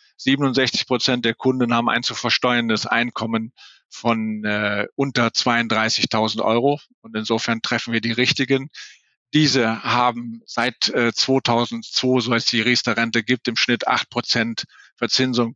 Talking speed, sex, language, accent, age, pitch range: 145 wpm, male, German, German, 50-69, 115-130 Hz